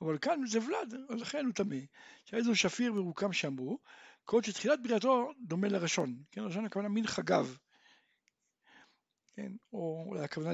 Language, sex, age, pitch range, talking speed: Hebrew, male, 60-79, 175-230 Hz, 150 wpm